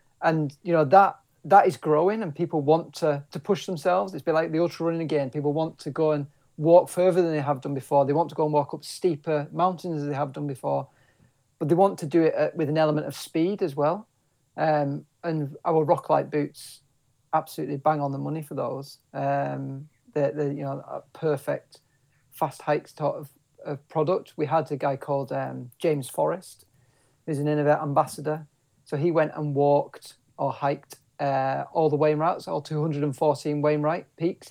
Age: 40-59